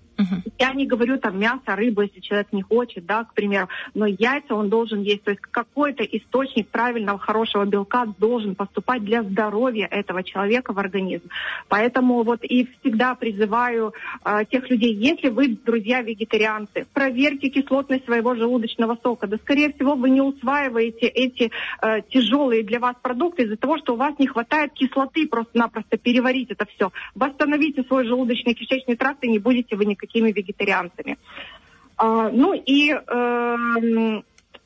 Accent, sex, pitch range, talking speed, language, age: native, female, 225-280 Hz, 150 wpm, Russian, 30-49